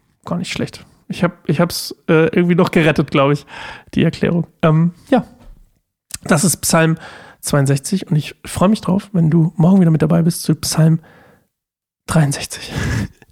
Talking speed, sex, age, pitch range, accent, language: 160 wpm, male, 40-59, 155-180 Hz, German, German